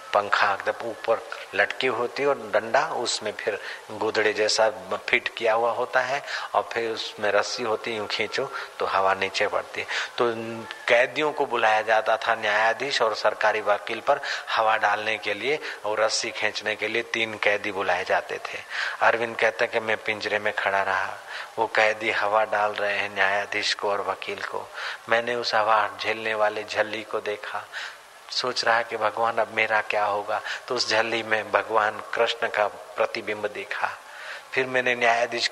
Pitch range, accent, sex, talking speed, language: 105-130 Hz, native, male, 125 wpm, Hindi